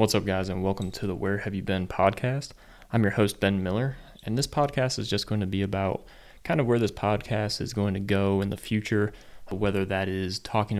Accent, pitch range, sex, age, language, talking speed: American, 100-115 Hz, male, 20-39, English, 235 wpm